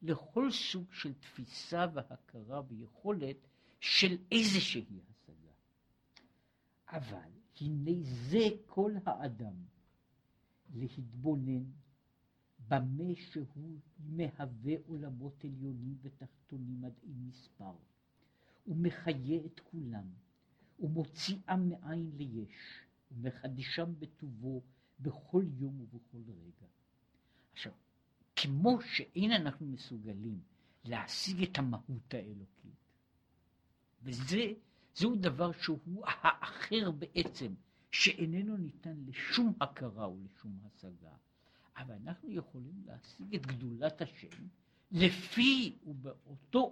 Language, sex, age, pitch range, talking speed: Hebrew, male, 60-79, 125-180 Hz, 85 wpm